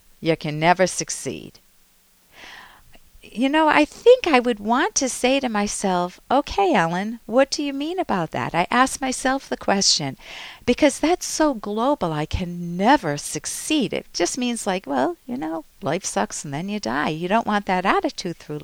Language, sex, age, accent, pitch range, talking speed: English, female, 50-69, American, 170-245 Hz, 175 wpm